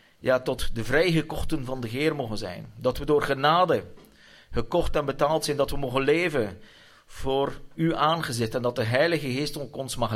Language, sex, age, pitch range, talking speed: Dutch, male, 40-59, 110-145 Hz, 185 wpm